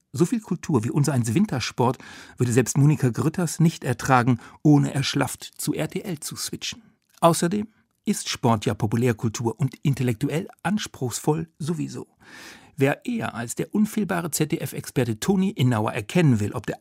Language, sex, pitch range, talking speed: German, male, 120-165 Hz, 140 wpm